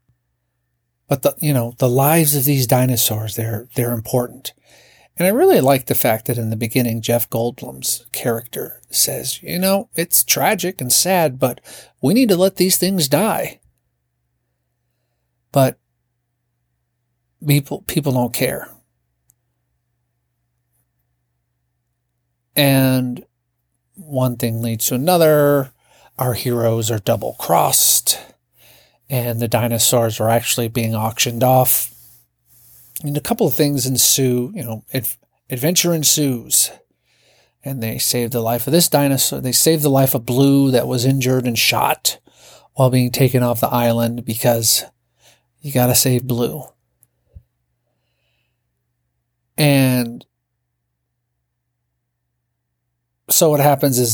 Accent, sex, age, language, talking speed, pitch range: American, male, 50-69, English, 120 wpm, 105-135 Hz